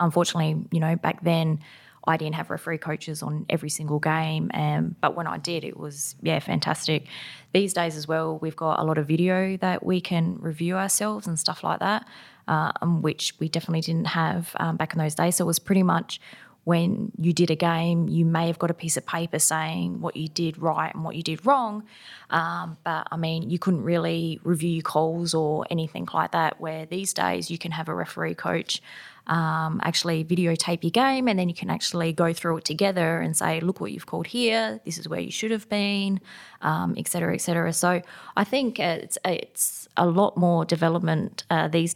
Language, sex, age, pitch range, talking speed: English, female, 20-39, 160-180 Hz, 205 wpm